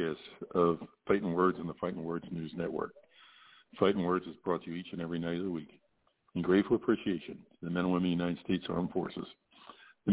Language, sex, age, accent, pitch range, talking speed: English, male, 50-69, American, 85-95 Hz, 220 wpm